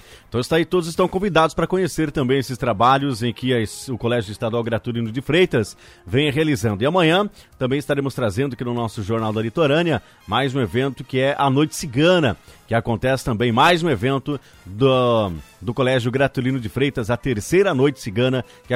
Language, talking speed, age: English, 180 wpm, 30-49